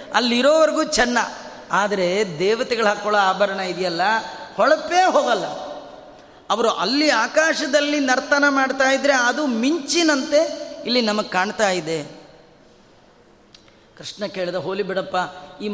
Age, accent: 30-49, native